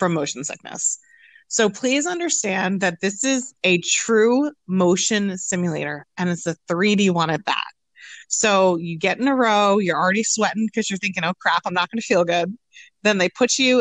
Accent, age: American, 30-49